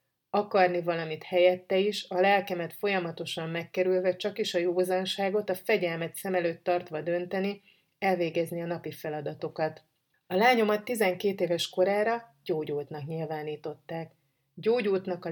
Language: Hungarian